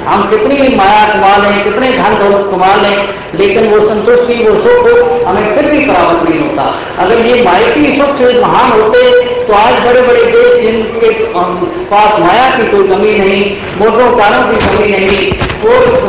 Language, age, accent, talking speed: Hindi, 50-69, native, 180 wpm